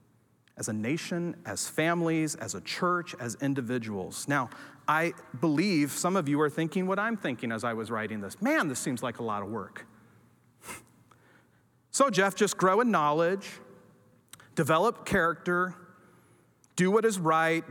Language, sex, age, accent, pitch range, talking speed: English, male, 40-59, American, 150-210 Hz, 155 wpm